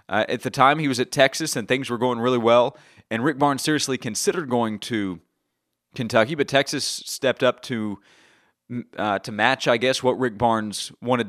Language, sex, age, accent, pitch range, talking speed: English, male, 30-49, American, 115-140 Hz, 190 wpm